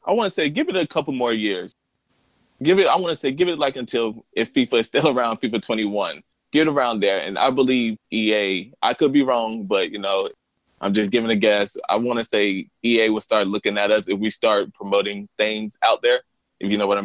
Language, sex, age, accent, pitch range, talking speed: English, male, 20-39, American, 105-120 Hz, 245 wpm